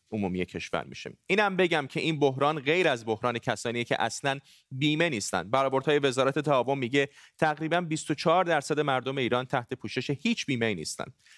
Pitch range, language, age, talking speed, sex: 120-150 Hz, Persian, 40-59, 160 wpm, male